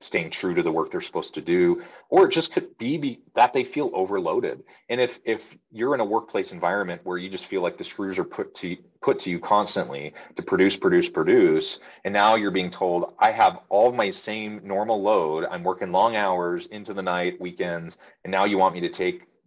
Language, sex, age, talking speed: English, male, 30-49, 220 wpm